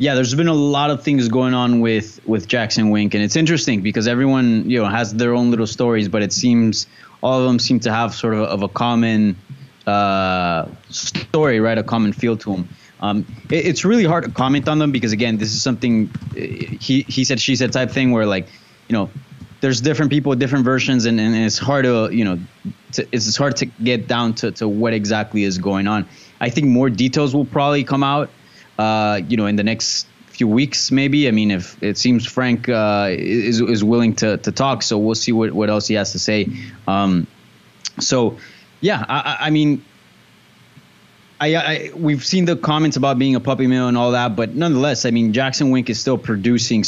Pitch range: 105-130 Hz